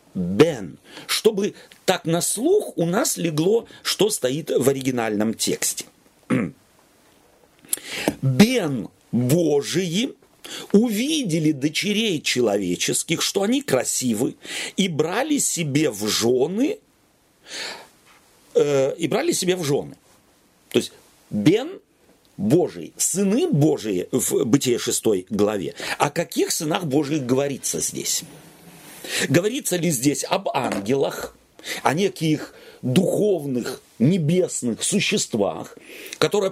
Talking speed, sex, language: 95 wpm, male, Russian